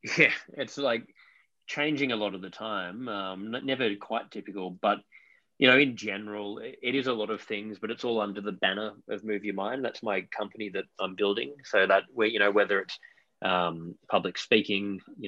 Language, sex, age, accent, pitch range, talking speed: English, male, 20-39, Australian, 95-110 Hz, 200 wpm